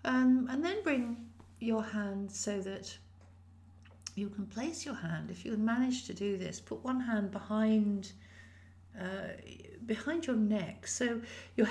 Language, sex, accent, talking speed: English, female, British, 150 wpm